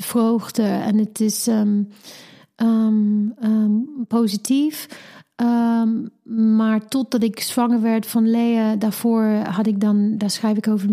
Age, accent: 40-59, Dutch